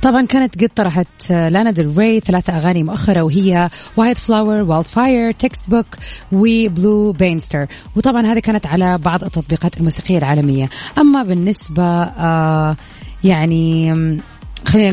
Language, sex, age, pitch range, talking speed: Arabic, female, 20-39, 165-215 Hz, 125 wpm